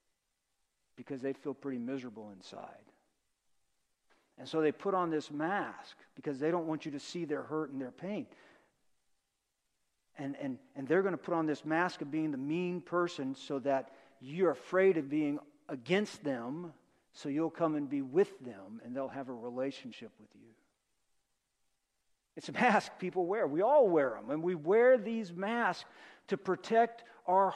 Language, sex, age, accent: English, male, 50-69, American